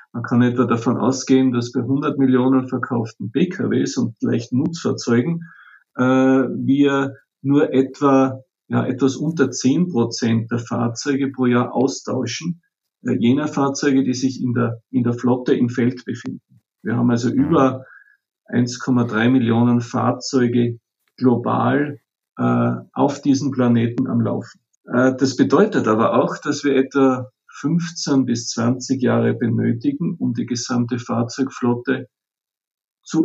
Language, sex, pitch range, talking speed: German, male, 120-140 Hz, 130 wpm